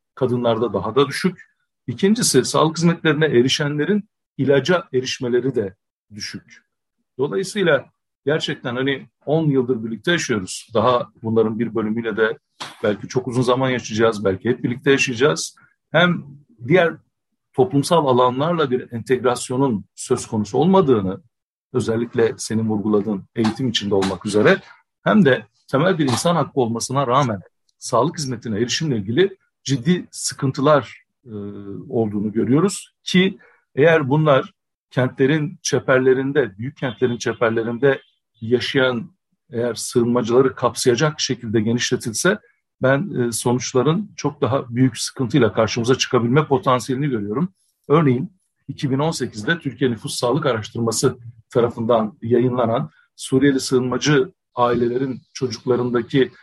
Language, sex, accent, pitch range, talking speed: Turkish, male, native, 115-145 Hz, 110 wpm